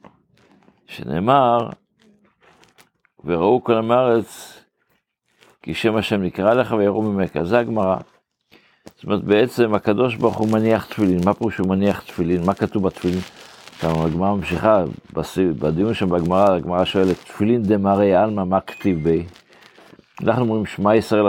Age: 60-79